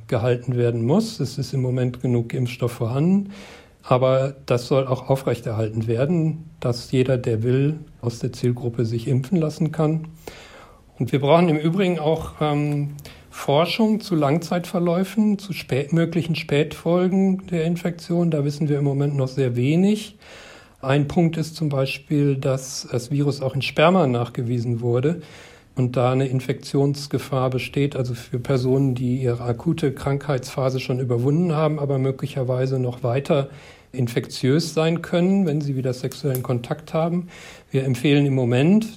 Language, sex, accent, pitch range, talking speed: German, male, German, 125-155 Hz, 145 wpm